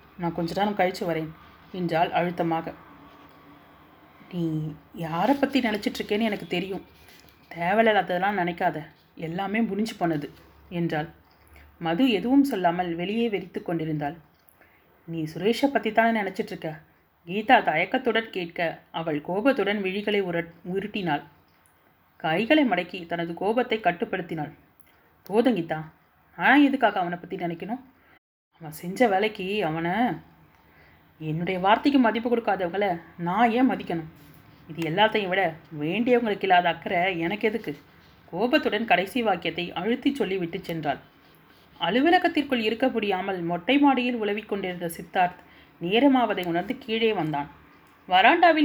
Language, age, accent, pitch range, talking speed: Tamil, 30-49, native, 170-225 Hz, 105 wpm